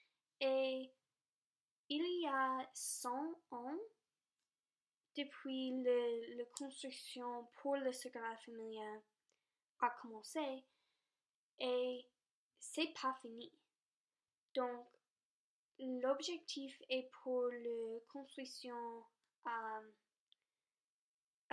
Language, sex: French, female